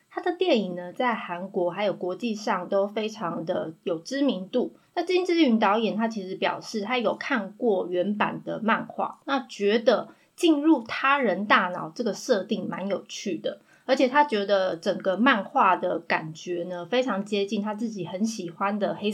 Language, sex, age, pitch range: Chinese, female, 20-39, 185-255 Hz